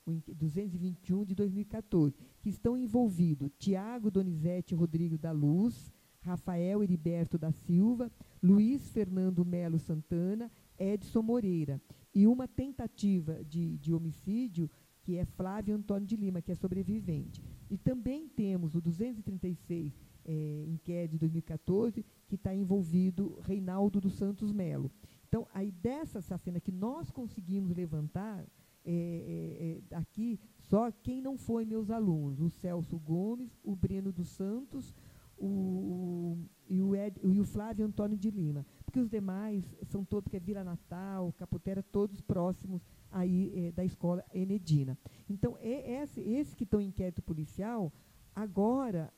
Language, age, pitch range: Portuguese, 50-69, 170-215 Hz